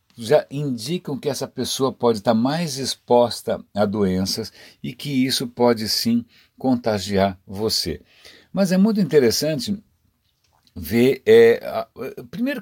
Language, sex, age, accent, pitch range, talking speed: Portuguese, male, 60-79, Brazilian, 105-145 Hz, 115 wpm